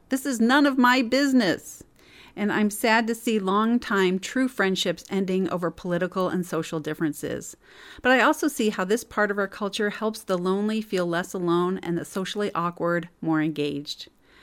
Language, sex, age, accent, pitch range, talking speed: English, female, 40-59, American, 170-210 Hz, 175 wpm